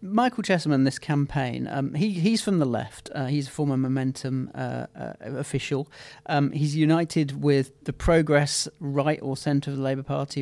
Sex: male